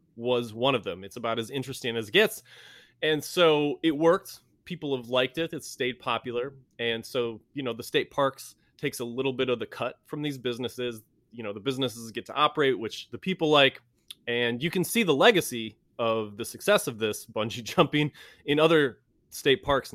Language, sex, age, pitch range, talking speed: English, male, 20-39, 115-150 Hz, 200 wpm